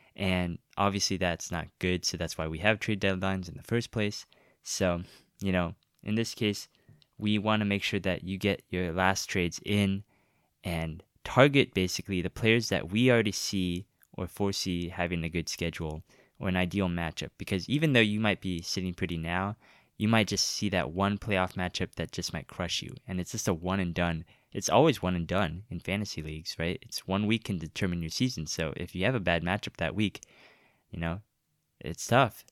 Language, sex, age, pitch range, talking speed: English, male, 20-39, 90-110 Hz, 205 wpm